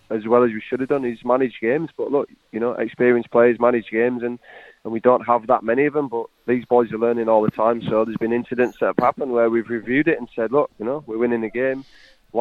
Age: 20-39